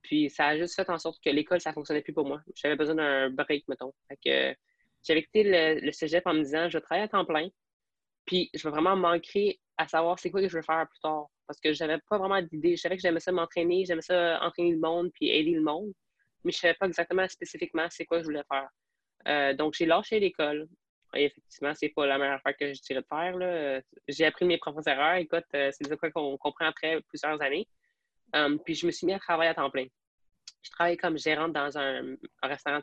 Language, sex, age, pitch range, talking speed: French, female, 20-39, 145-175 Hz, 250 wpm